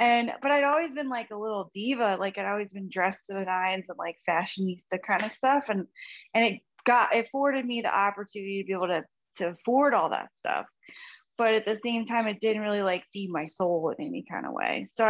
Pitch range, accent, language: 180-230 Hz, American, English